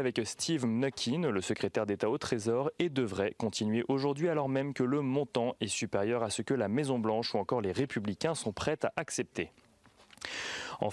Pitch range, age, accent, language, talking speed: 105-135 Hz, 30-49, French, French, 185 wpm